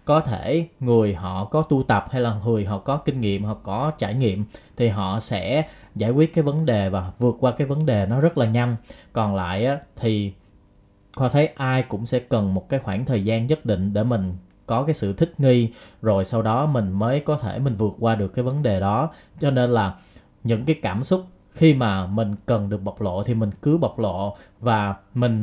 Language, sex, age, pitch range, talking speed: Vietnamese, male, 20-39, 100-135 Hz, 225 wpm